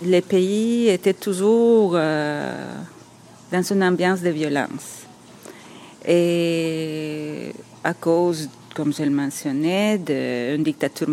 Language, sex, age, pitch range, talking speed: French, female, 40-59, 155-210 Hz, 100 wpm